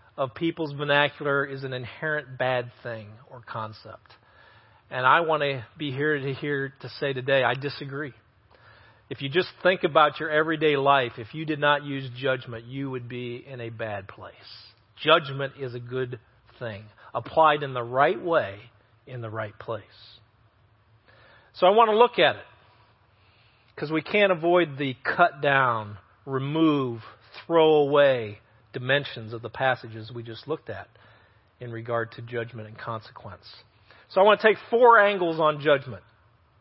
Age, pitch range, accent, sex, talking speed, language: 40-59, 110-155 Hz, American, male, 160 wpm, English